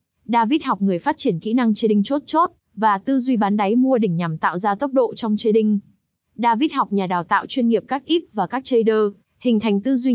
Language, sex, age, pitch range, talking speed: Vietnamese, female, 20-39, 205-250 Hz, 250 wpm